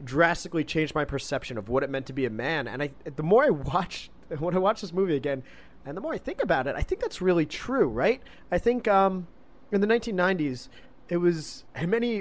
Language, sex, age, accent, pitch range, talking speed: English, male, 20-39, American, 130-165 Hz, 235 wpm